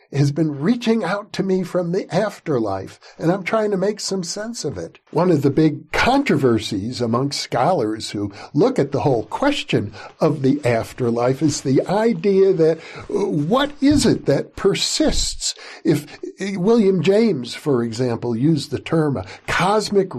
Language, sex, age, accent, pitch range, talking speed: English, male, 60-79, American, 130-195 Hz, 160 wpm